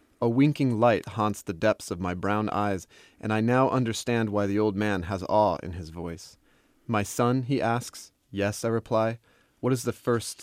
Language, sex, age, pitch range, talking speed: English, male, 30-49, 95-120 Hz, 195 wpm